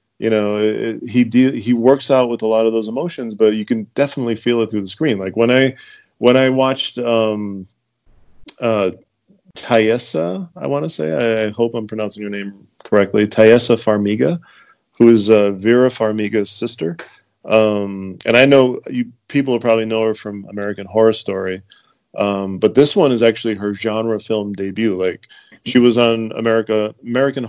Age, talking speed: 30-49, 180 wpm